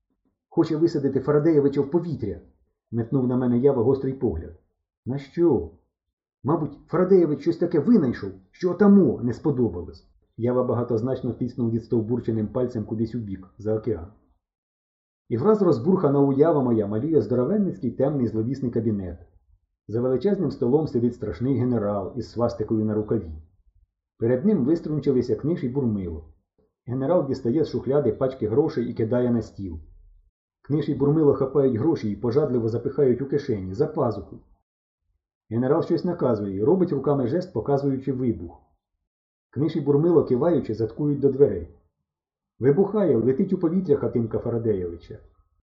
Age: 30-49